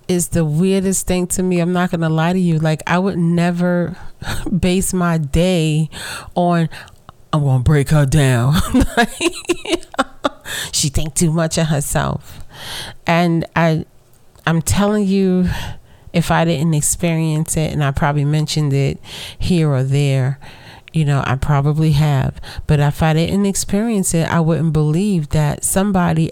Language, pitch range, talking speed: English, 140-175 Hz, 150 wpm